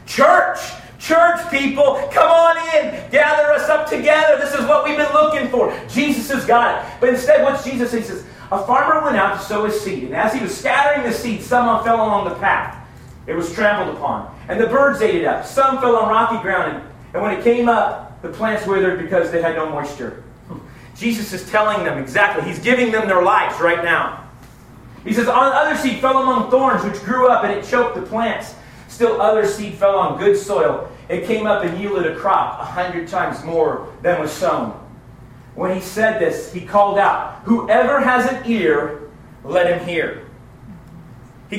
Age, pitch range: 40-59, 185-280 Hz